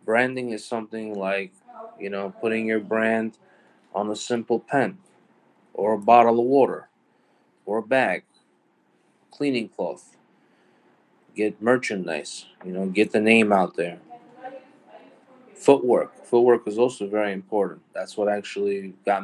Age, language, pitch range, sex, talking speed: 20-39, English, 100-115 Hz, male, 130 wpm